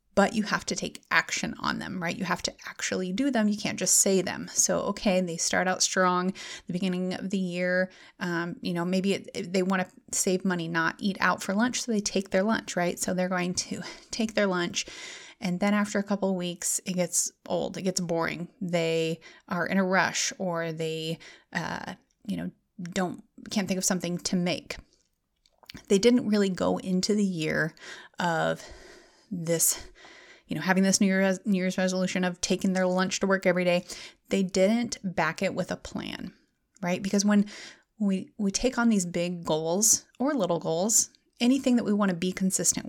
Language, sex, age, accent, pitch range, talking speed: English, female, 30-49, American, 180-210 Hz, 195 wpm